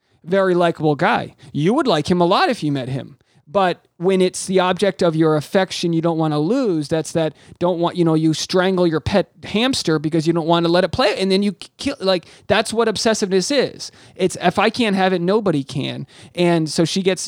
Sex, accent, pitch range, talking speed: male, American, 150-185 Hz, 230 wpm